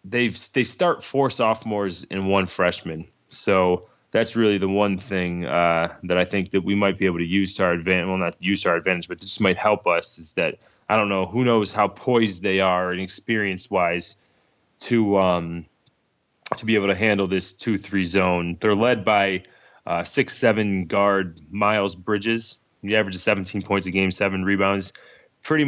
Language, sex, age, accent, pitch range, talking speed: English, male, 20-39, American, 95-110 Hz, 190 wpm